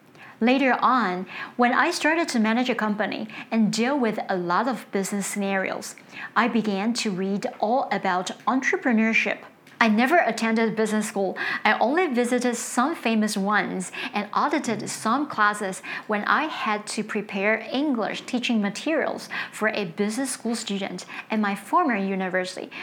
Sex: female